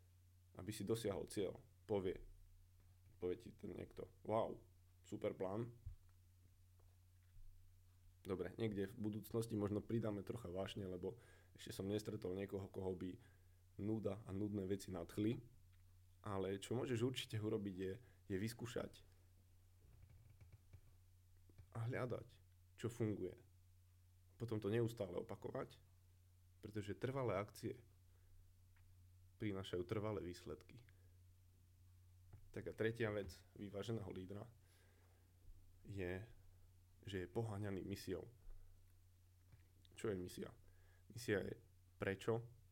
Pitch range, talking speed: 90-105 Hz, 100 wpm